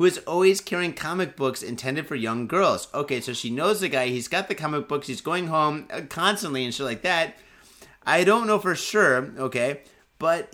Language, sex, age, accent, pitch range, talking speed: English, male, 30-49, American, 140-190 Hz, 205 wpm